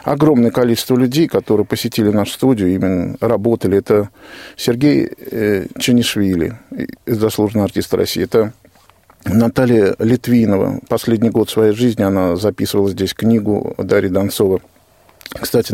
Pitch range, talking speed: 105-125 Hz, 110 wpm